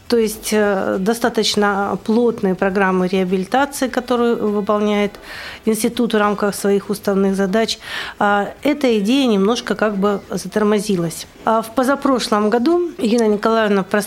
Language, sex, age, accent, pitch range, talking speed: Russian, female, 40-59, native, 200-230 Hz, 105 wpm